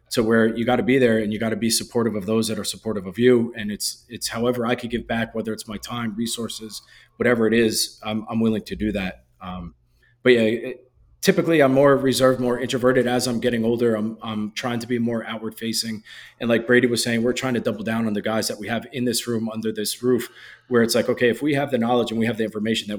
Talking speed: 265 wpm